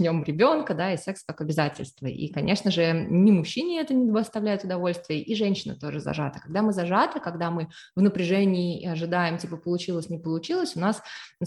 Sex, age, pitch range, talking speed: female, 20-39, 160-200 Hz, 185 wpm